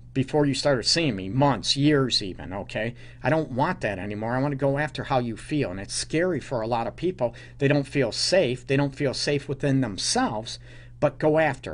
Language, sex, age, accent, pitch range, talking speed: English, male, 50-69, American, 125-155 Hz, 220 wpm